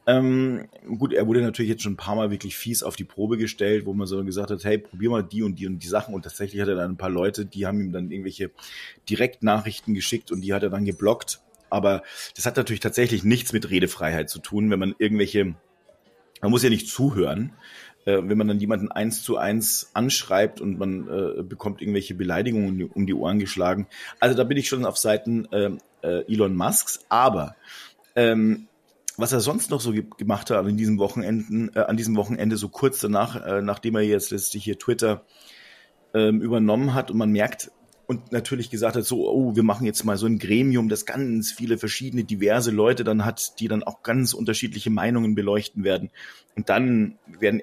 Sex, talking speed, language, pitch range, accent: male, 205 wpm, German, 100-115 Hz, German